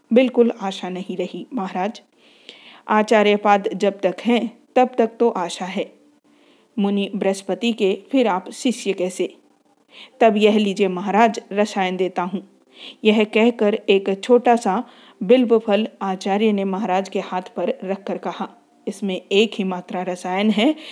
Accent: native